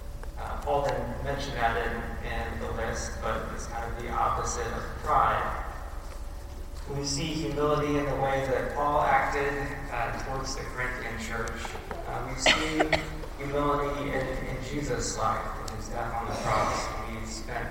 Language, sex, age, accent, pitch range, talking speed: English, male, 20-39, American, 115-145 Hz, 160 wpm